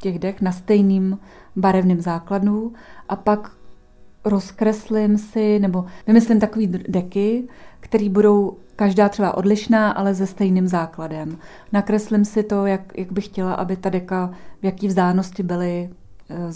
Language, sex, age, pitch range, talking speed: Czech, female, 30-49, 185-205 Hz, 140 wpm